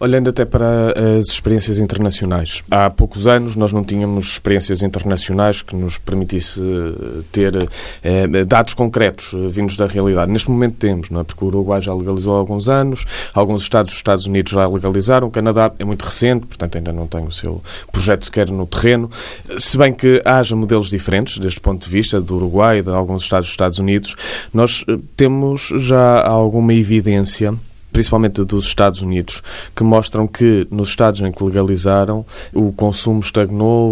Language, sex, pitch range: Portuguese, male, 95-110 Hz